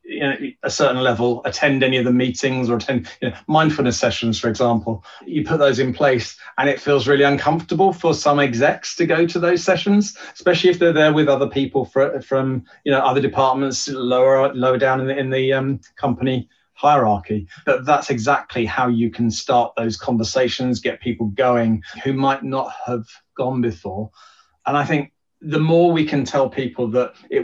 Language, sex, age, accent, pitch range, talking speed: English, male, 30-49, British, 125-155 Hz, 190 wpm